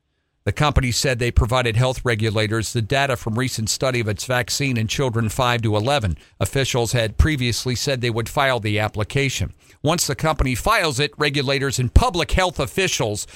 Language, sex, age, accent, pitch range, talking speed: English, male, 50-69, American, 110-170 Hz, 175 wpm